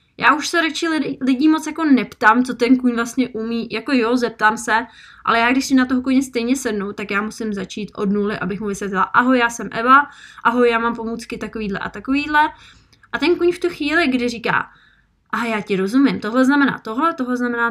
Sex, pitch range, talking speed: female, 215-255 Hz, 215 wpm